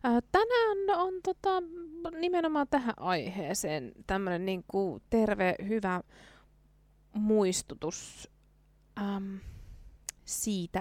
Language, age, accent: Finnish, 20-39, native